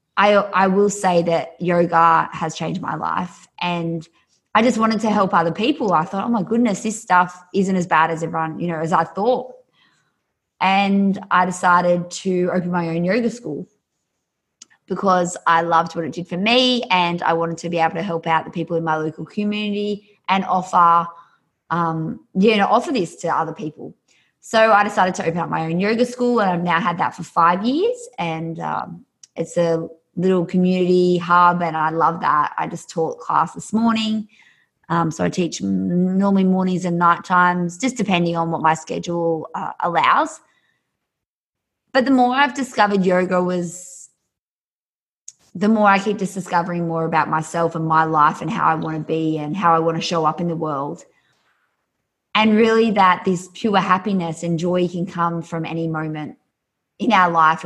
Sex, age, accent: female, 20-39, Australian